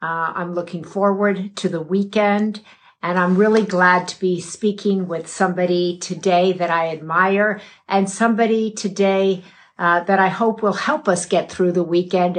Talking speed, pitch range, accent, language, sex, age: 165 wpm, 180-205 Hz, American, English, female, 50-69